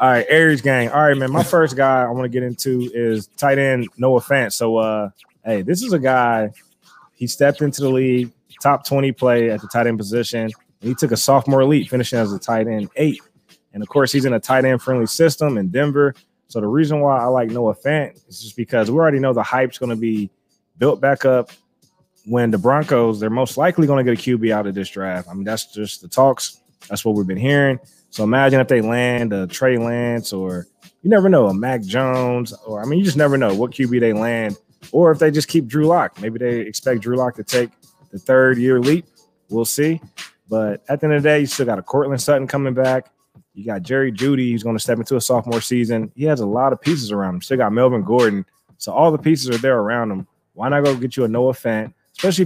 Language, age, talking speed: English, 20-39, 245 wpm